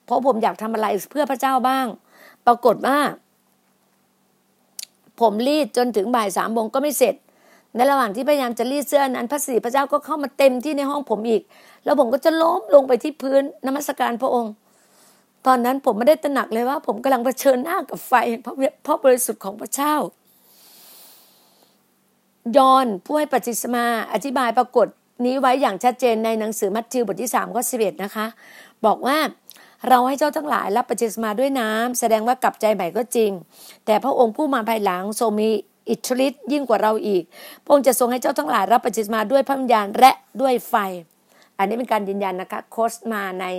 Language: Thai